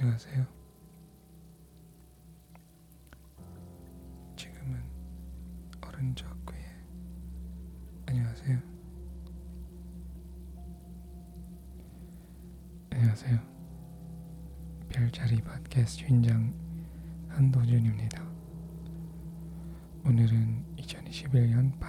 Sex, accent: male, native